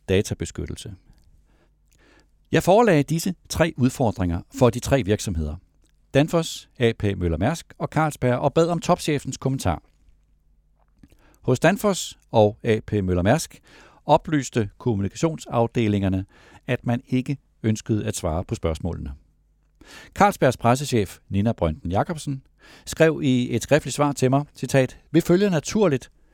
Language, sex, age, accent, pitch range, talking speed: Danish, male, 60-79, native, 95-140 Hz, 120 wpm